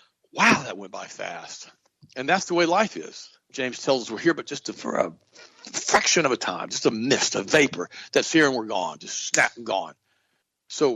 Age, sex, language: 60-79, male, English